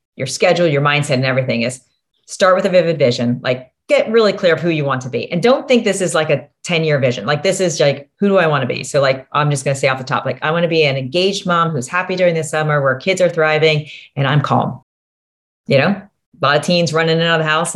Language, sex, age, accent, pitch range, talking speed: English, female, 30-49, American, 135-180 Hz, 285 wpm